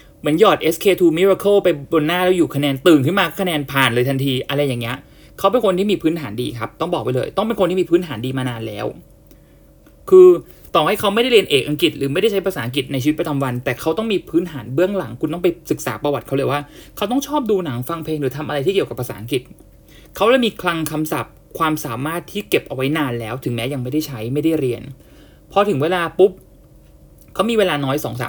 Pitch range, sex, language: 130-170 Hz, male, English